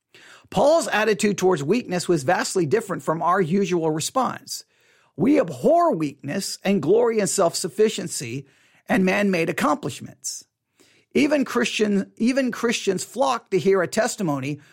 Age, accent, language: 50-69, American, English